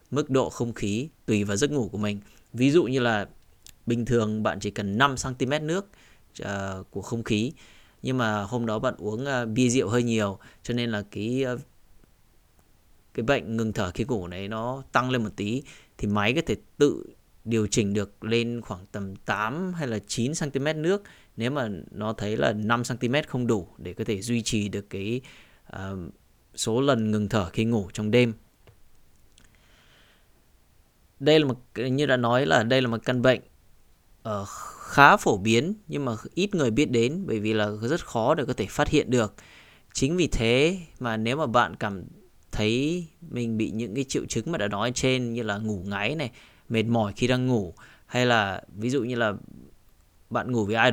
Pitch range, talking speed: 105-130 Hz, 195 wpm